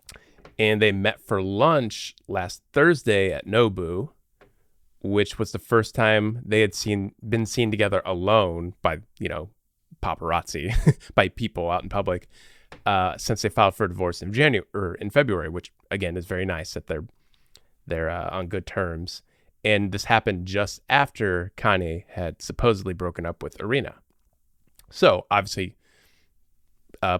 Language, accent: English, American